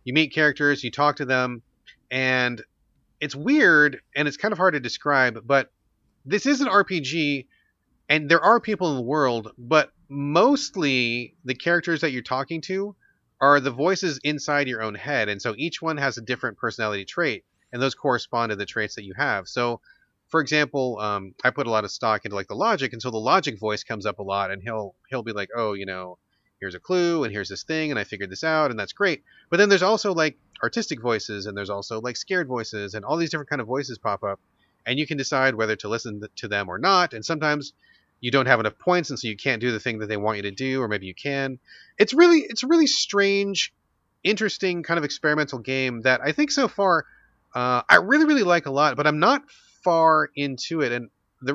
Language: English